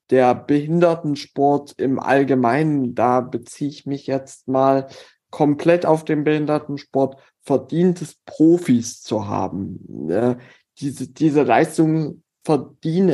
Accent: German